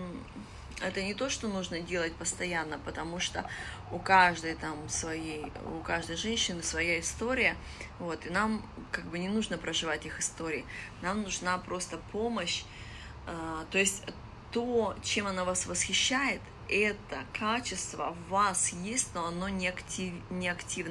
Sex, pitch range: female, 165-205 Hz